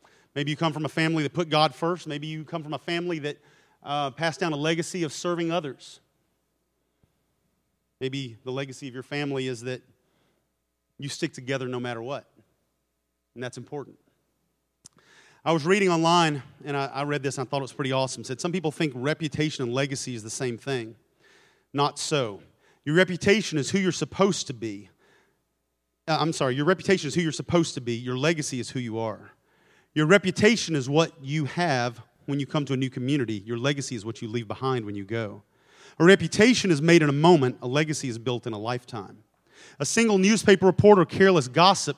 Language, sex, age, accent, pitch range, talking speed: English, male, 40-59, American, 120-160 Hz, 200 wpm